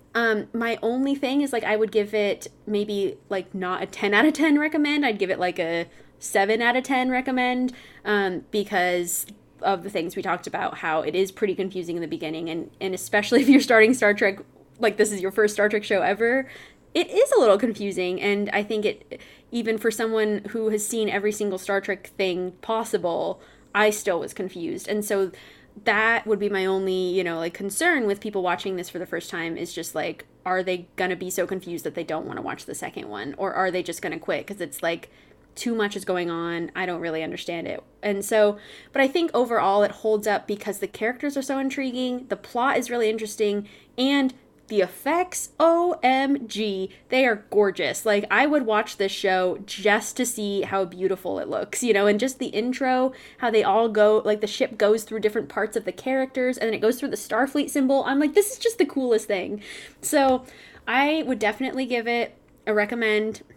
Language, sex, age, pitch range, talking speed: English, female, 20-39, 190-245 Hz, 215 wpm